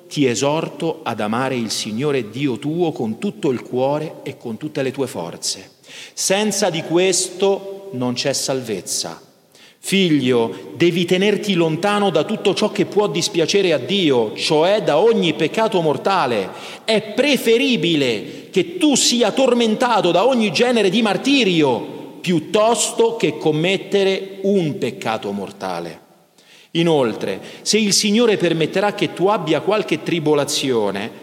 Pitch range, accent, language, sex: 150-215 Hz, native, Italian, male